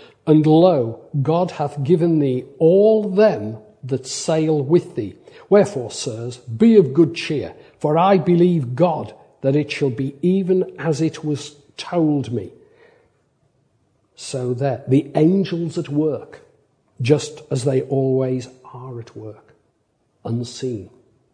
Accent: British